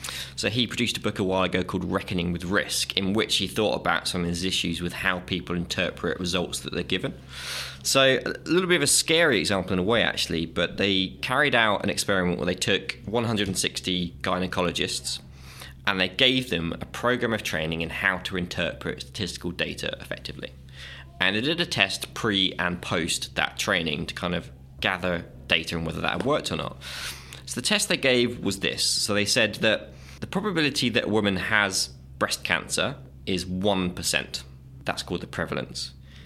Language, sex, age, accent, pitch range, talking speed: English, male, 20-39, British, 65-105 Hz, 185 wpm